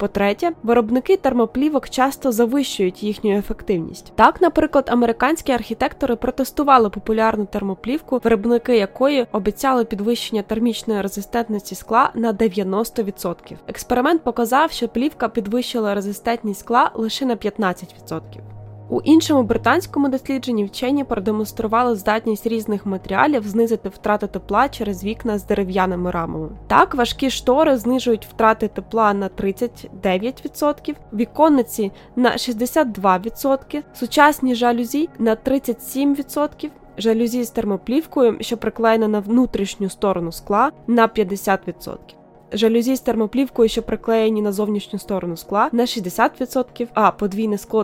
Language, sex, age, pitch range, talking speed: Ukrainian, female, 20-39, 210-255 Hz, 115 wpm